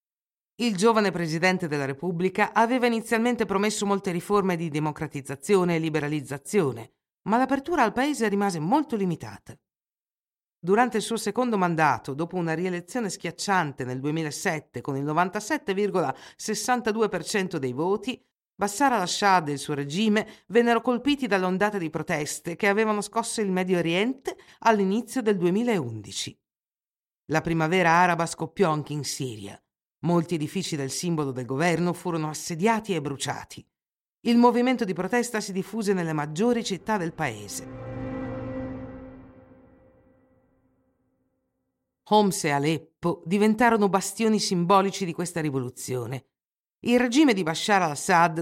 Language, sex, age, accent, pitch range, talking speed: Italian, female, 50-69, native, 155-215 Hz, 125 wpm